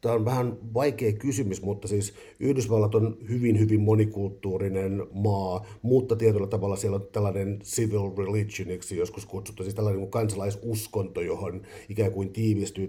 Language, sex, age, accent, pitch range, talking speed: Finnish, male, 50-69, native, 95-115 Hz, 140 wpm